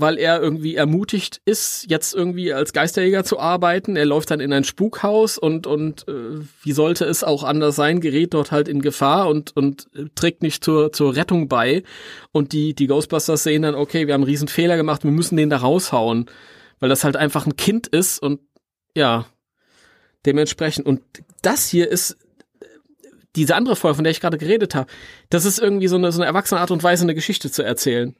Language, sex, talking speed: German, male, 200 wpm